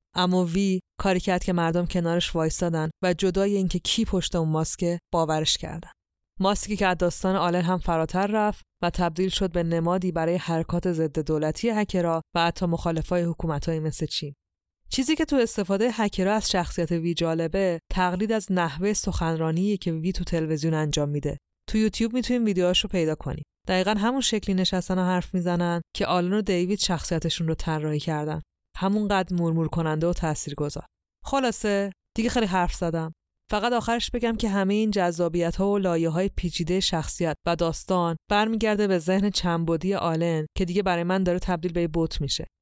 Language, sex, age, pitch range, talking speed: Persian, female, 20-39, 165-190 Hz, 165 wpm